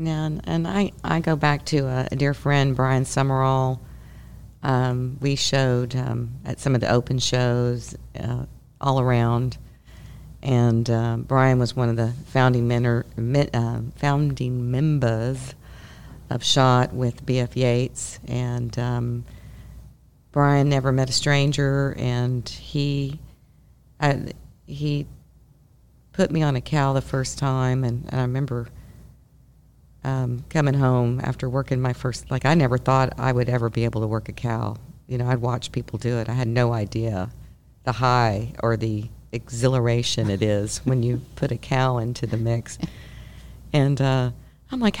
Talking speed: 155 wpm